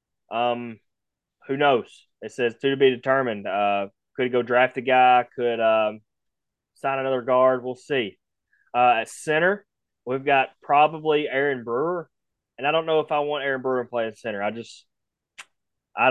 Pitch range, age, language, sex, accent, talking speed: 115-145 Hz, 20-39, English, male, American, 170 wpm